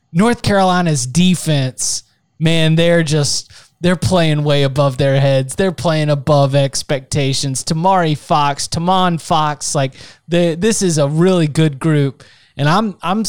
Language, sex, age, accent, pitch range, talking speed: English, male, 20-39, American, 140-170 Hz, 140 wpm